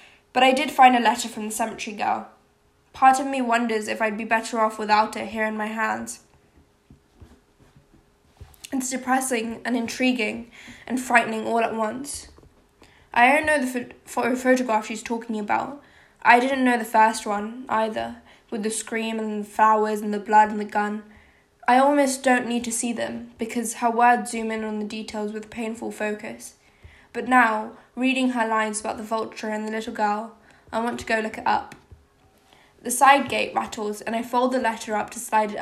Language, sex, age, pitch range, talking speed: English, female, 10-29, 215-245 Hz, 185 wpm